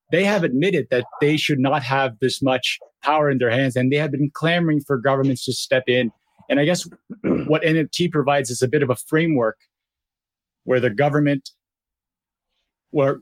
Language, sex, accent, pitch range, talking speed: English, male, American, 130-155 Hz, 180 wpm